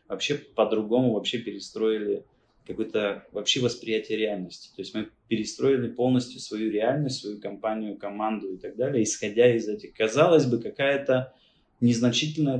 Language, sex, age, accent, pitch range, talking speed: Russian, male, 20-39, native, 105-125 Hz, 135 wpm